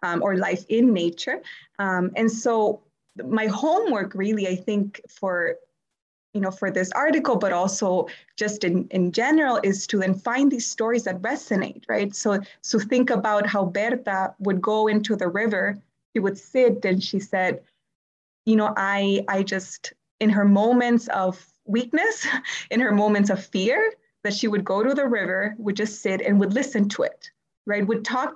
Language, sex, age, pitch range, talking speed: English, female, 20-39, 195-240 Hz, 180 wpm